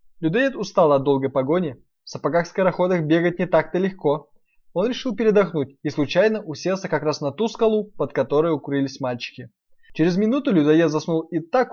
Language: Russian